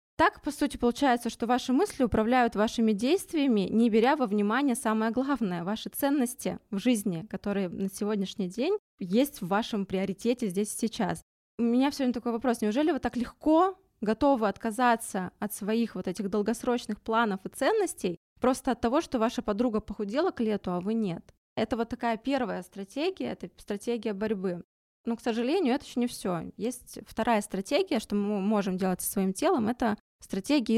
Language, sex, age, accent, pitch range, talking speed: Russian, female, 20-39, native, 205-250 Hz, 175 wpm